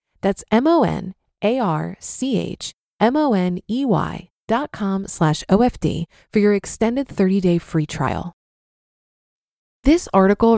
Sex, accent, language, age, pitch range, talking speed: female, American, English, 20-39, 175-245 Hz, 70 wpm